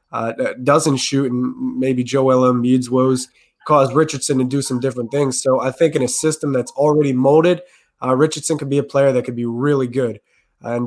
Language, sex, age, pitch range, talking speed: English, male, 20-39, 130-145 Hz, 205 wpm